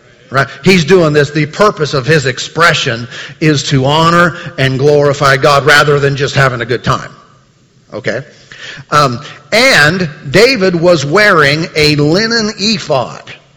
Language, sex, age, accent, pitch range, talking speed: English, male, 50-69, American, 140-165 Hz, 135 wpm